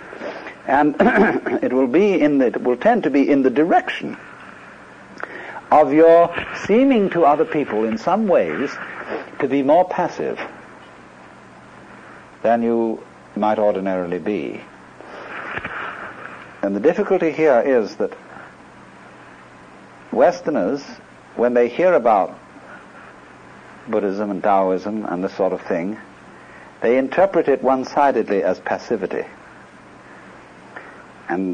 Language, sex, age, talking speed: English, male, 60-79, 110 wpm